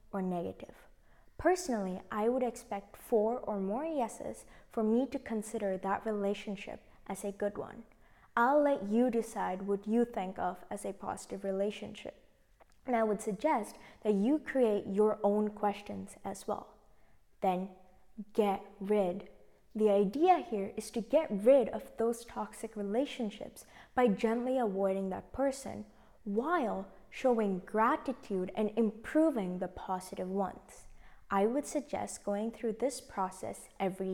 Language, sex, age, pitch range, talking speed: English, female, 20-39, 195-240 Hz, 140 wpm